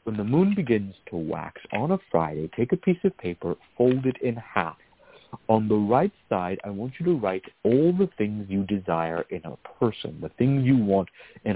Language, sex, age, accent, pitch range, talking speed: English, male, 60-79, American, 95-145 Hz, 210 wpm